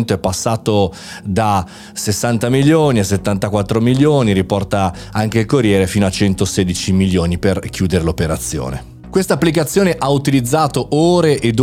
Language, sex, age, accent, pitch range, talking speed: Italian, male, 30-49, native, 100-130 Hz, 130 wpm